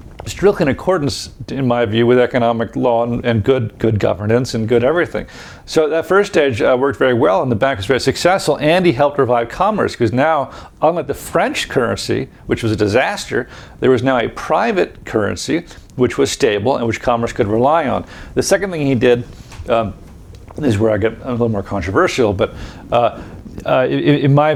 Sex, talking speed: male, 195 wpm